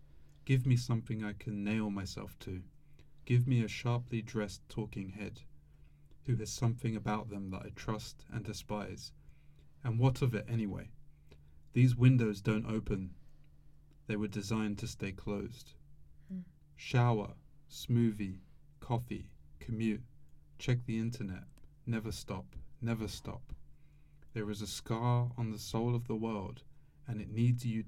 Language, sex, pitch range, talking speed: English, male, 75-115 Hz, 140 wpm